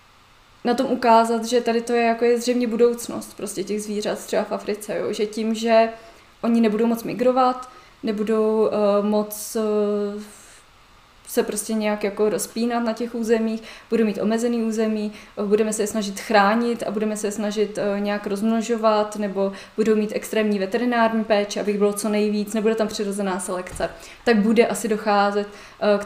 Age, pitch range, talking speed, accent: 20-39, 200-225 Hz, 155 wpm, native